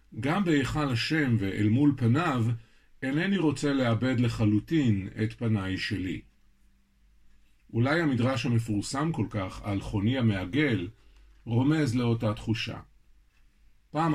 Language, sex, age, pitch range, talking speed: Hebrew, male, 50-69, 110-130 Hz, 105 wpm